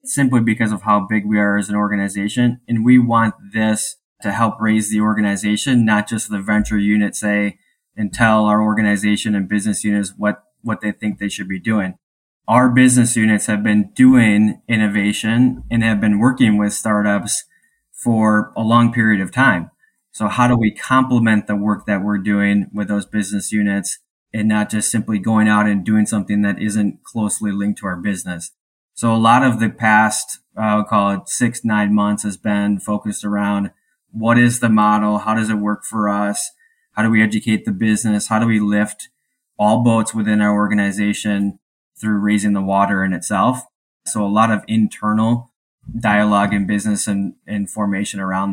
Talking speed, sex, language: 185 wpm, male, English